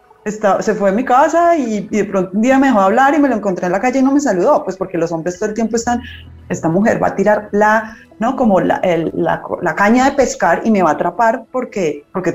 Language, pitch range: Spanish, 170-245 Hz